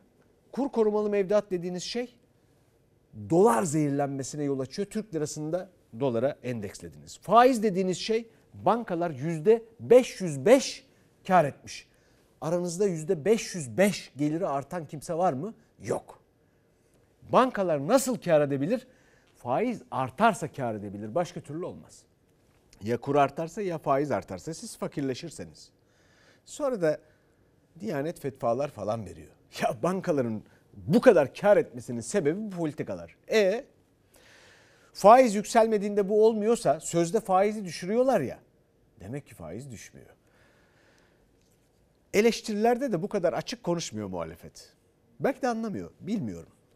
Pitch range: 125-205 Hz